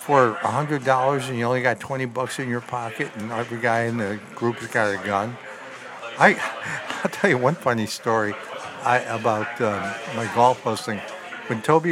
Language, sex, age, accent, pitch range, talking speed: English, male, 60-79, American, 110-155 Hz, 185 wpm